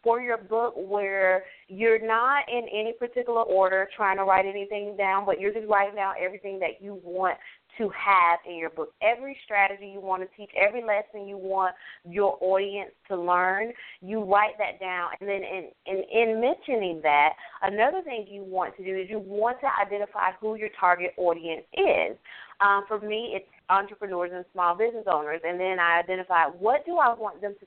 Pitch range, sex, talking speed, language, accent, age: 180-215 Hz, female, 190 wpm, English, American, 20-39